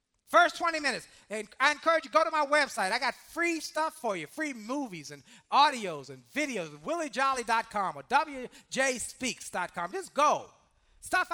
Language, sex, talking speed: English, male, 155 wpm